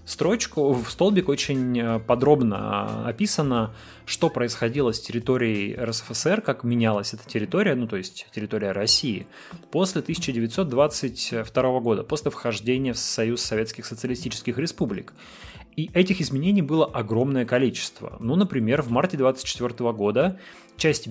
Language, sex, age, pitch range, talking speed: Russian, male, 20-39, 115-140 Hz, 120 wpm